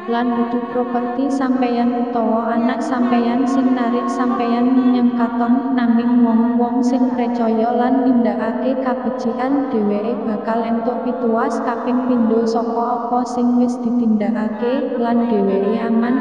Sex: female